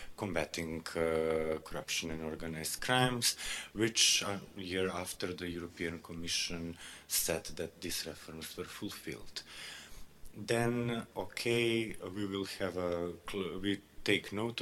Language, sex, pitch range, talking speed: Hungarian, male, 85-100 Hz, 125 wpm